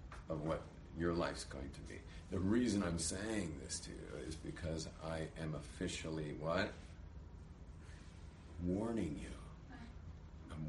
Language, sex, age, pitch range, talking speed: English, male, 50-69, 80-90 Hz, 130 wpm